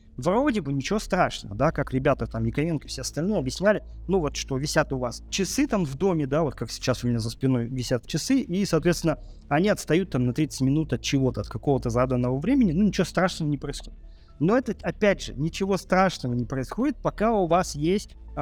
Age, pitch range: 30-49, 130-185 Hz